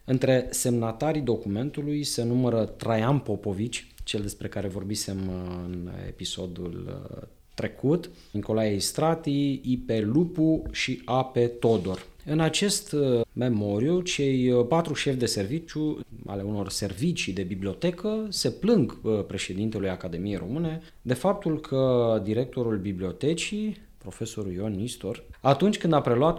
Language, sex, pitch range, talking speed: English, male, 100-145 Hz, 115 wpm